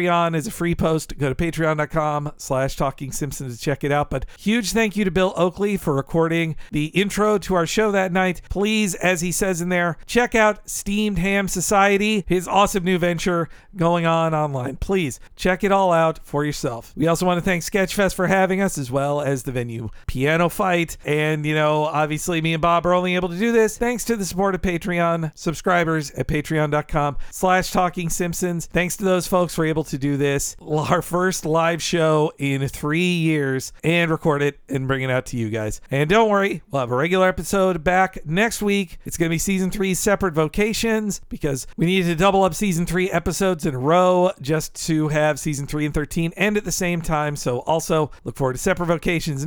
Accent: American